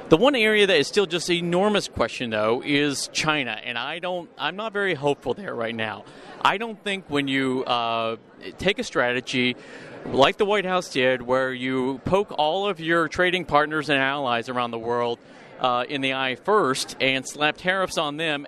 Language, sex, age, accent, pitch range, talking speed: English, male, 40-59, American, 125-175 Hz, 200 wpm